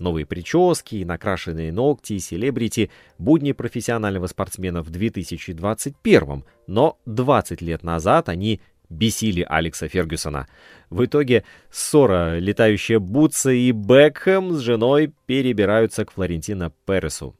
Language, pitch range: Russian, 85-125 Hz